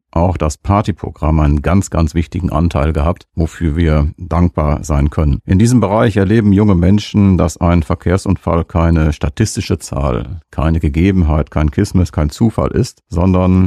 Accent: German